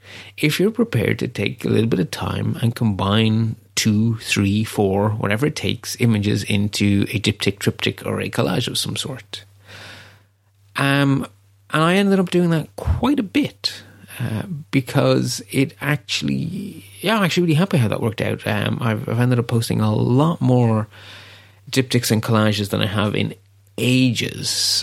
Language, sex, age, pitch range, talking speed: English, male, 30-49, 100-130 Hz, 165 wpm